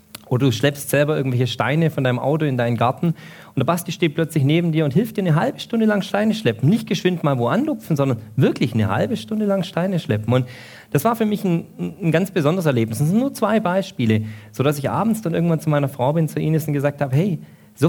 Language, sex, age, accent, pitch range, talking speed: German, male, 40-59, German, 120-175 Hz, 240 wpm